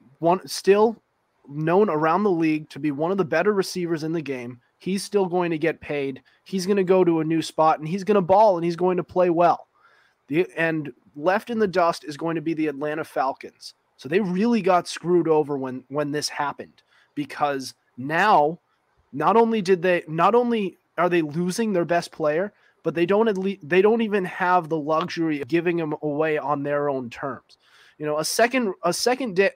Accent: American